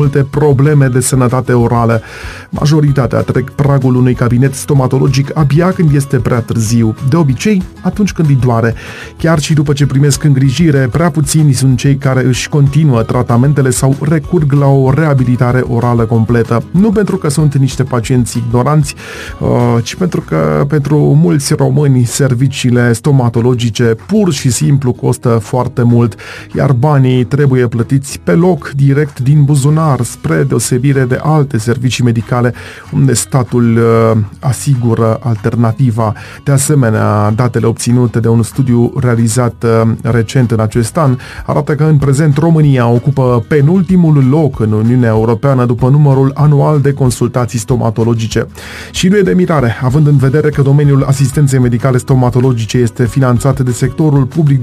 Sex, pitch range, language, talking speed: male, 120-145 Hz, Romanian, 145 wpm